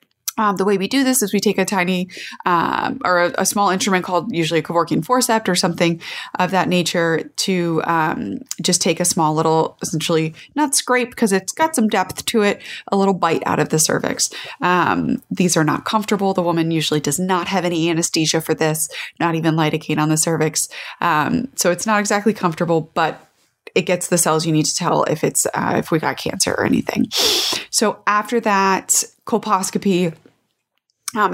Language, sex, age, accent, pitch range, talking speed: English, female, 20-39, American, 170-215 Hz, 190 wpm